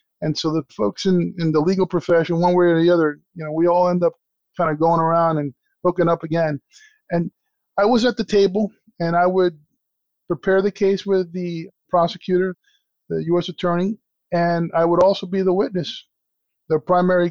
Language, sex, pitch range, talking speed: English, male, 165-195 Hz, 190 wpm